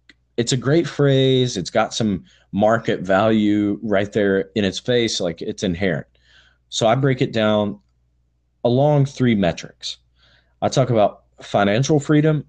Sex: male